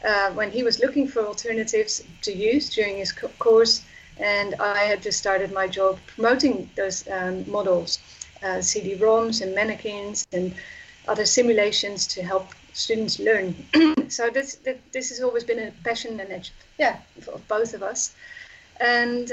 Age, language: 30-49, English